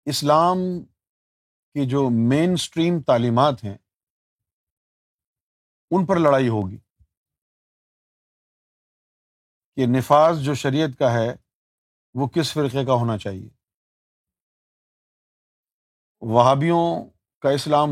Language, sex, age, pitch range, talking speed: Urdu, male, 50-69, 105-155 Hz, 85 wpm